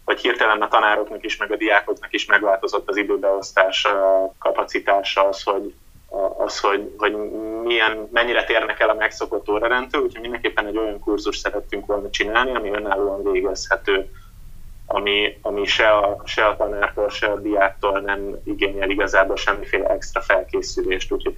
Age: 20-39